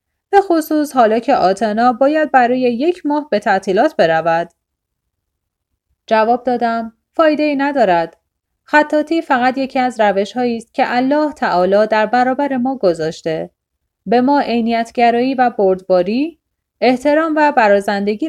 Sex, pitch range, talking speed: female, 180-270 Hz, 125 wpm